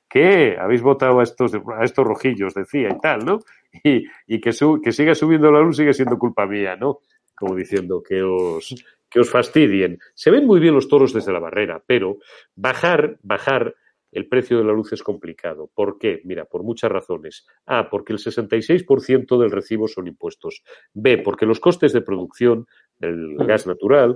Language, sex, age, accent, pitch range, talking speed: Spanish, male, 40-59, Spanish, 100-140 Hz, 185 wpm